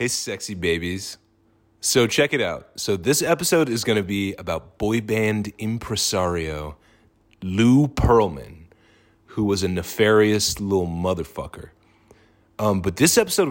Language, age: English, 30-49